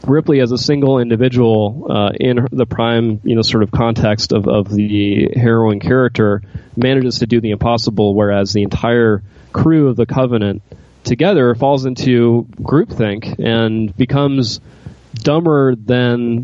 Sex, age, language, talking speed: male, 20-39, English, 140 wpm